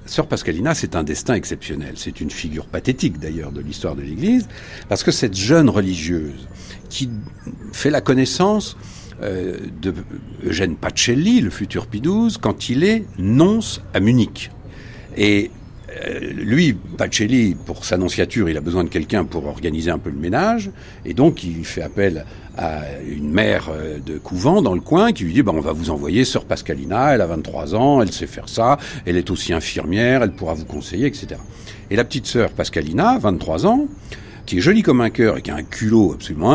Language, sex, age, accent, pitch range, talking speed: French, male, 60-79, French, 90-130 Hz, 190 wpm